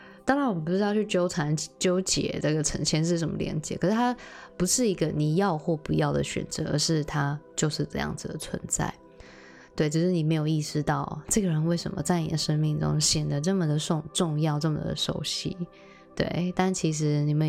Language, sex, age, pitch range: Chinese, female, 20-39, 150-180 Hz